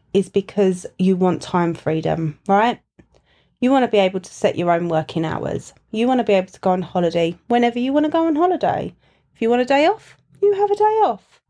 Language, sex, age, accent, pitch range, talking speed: English, female, 30-49, British, 185-230 Hz, 235 wpm